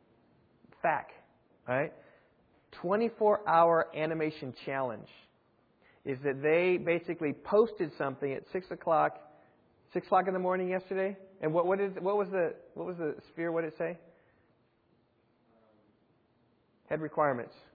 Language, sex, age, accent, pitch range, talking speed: English, male, 40-59, American, 125-185 Hz, 130 wpm